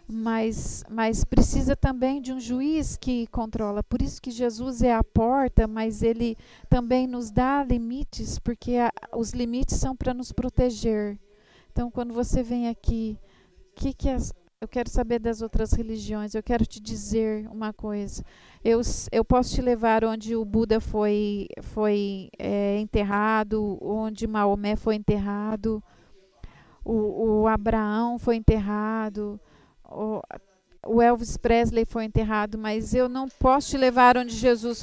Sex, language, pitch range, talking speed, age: female, English, 215-245 Hz, 145 wpm, 40-59